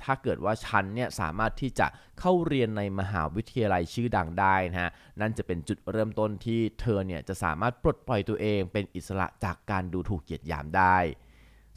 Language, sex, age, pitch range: Thai, male, 20-39, 95-120 Hz